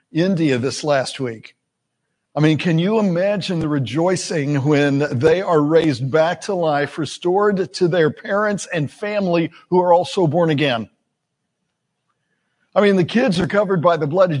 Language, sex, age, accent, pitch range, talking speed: English, male, 50-69, American, 160-205 Hz, 160 wpm